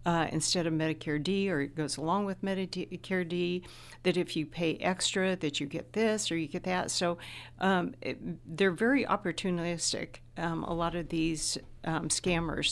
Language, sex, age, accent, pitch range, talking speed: English, female, 60-79, American, 160-190 Hz, 175 wpm